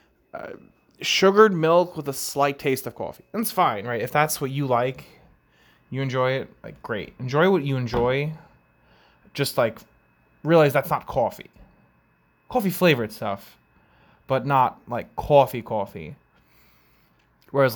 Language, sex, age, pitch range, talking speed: English, male, 20-39, 115-145 Hz, 140 wpm